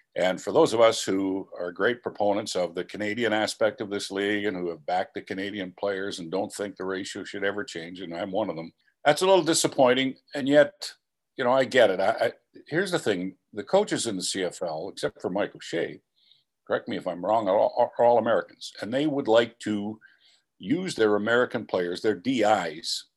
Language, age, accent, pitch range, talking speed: English, 50-69, American, 95-120 Hz, 205 wpm